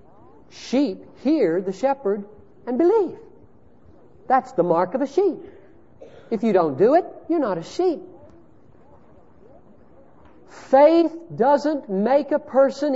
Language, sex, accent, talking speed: English, male, American, 120 wpm